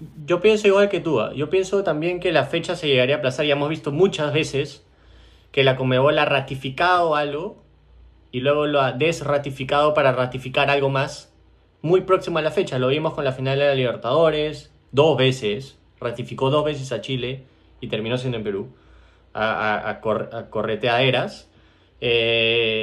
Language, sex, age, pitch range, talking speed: Spanish, male, 20-39, 125-155 Hz, 175 wpm